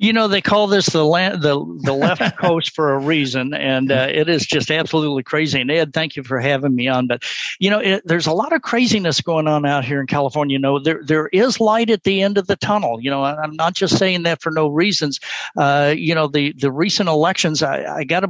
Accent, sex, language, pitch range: American, male, English, 135-165 Hz